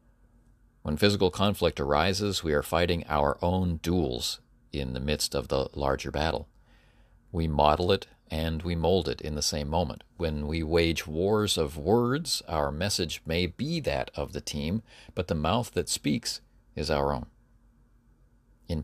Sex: male